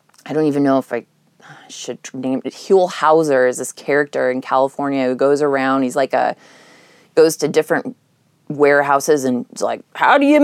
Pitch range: 145-205 Hz